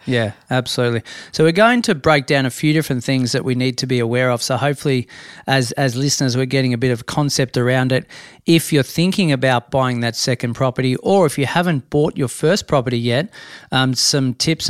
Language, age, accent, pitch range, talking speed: English, 40-59, Australian, 125-145 Hz, 215 wpm